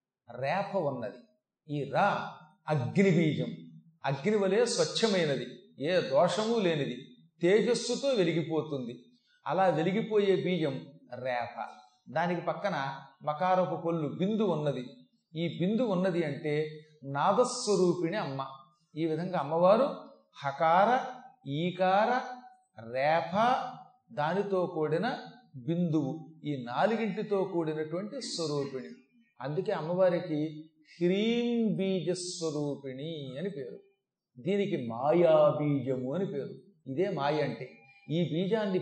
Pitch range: 150-200 Hz